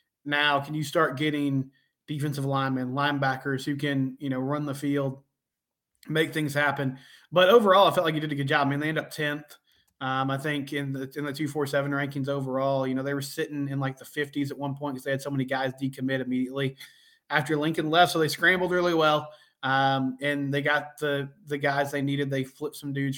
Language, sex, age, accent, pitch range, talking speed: English, male, 20-39, American, 135-150 Hz, 220 wpm